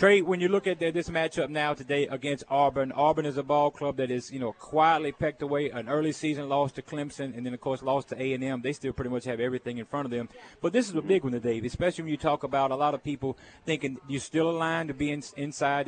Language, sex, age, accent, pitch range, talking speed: English, male, 30-49, American, 130-150 Hz, 265 wpm